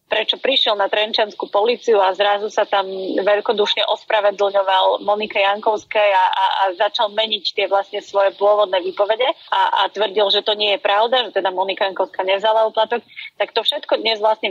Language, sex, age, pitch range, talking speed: Slovak, female, 30-49, 200-240 Hz, 175 wpm